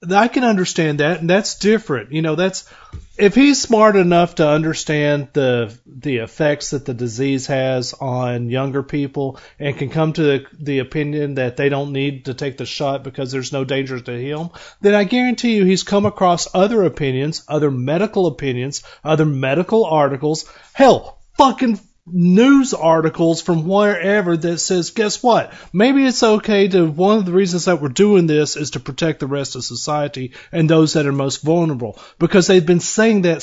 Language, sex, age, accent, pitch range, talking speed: English, male, 40-59, American, 140-190 Hz, 185 wpm